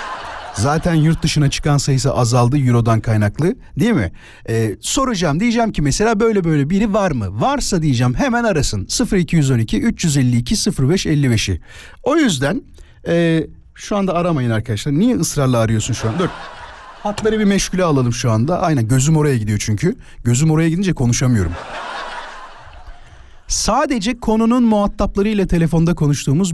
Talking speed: 135 wpm